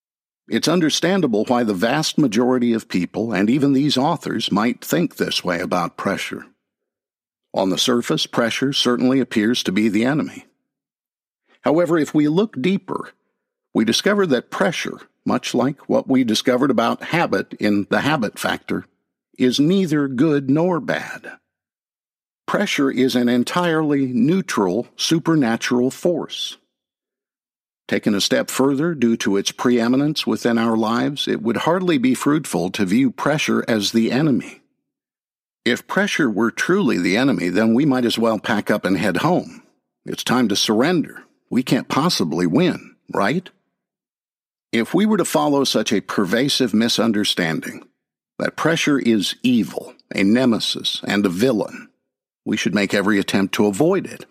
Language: English